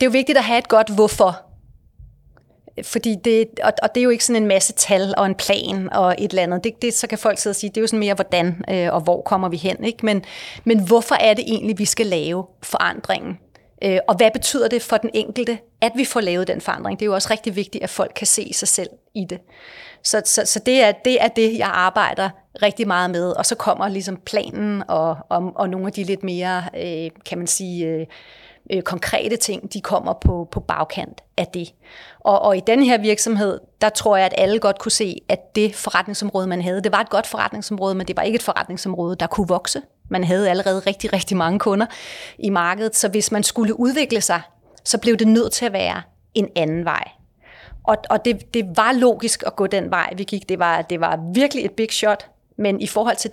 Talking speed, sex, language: 230 wpm, female, Danish